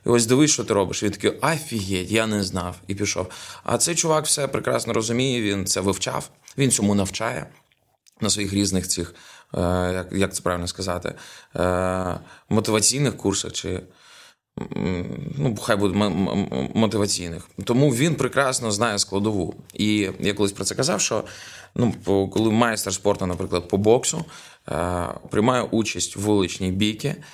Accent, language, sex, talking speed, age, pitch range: native, Ukrainian, male, 145 wpm, 20-39, 95-110 Hz